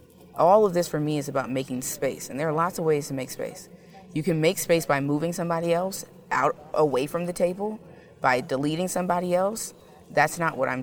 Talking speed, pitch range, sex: 215 wpm, 140-170 Hz, female